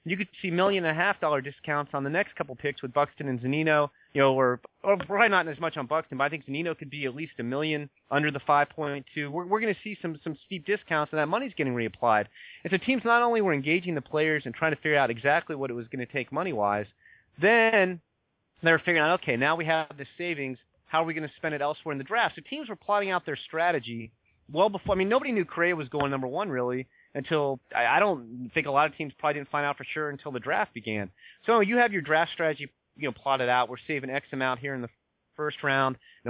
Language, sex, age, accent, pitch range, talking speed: English, male, 30-49, American, 135-180 Hz, 260 wpm